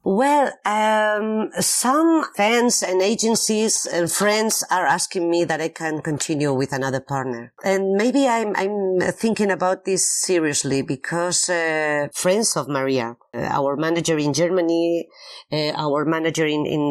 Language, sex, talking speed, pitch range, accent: English, female, 145 wpm, 145-180 Hz, Spanish